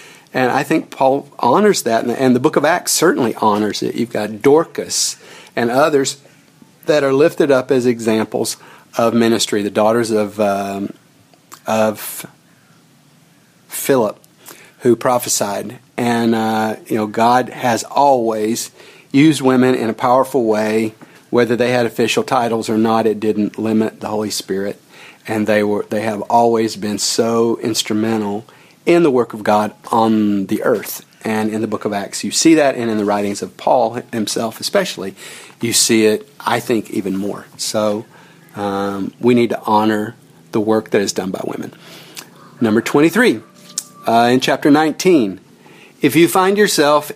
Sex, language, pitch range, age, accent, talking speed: male, English, 110-135 Hz, 40-59, American, 160 wpm